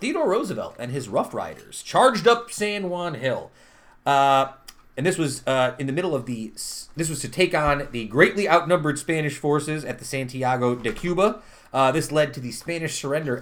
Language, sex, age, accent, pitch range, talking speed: English, male, 30-49, American, 125-165 Hz, 190 wpm